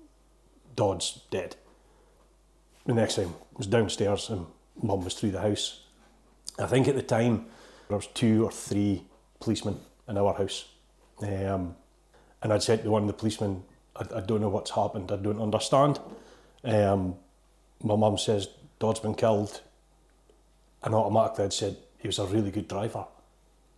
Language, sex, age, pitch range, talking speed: English, male, 30-49, 100-110 Hz, 160 wpm